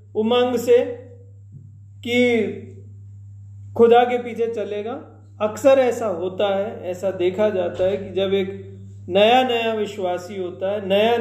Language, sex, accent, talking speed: Hindi, male, native, 130 wpm